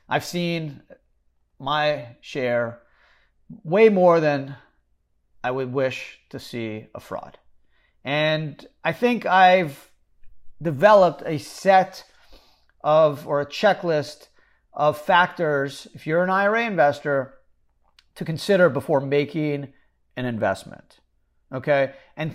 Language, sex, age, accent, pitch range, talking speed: English, male, 40-59, American, 125-175 Hz, 105 wpm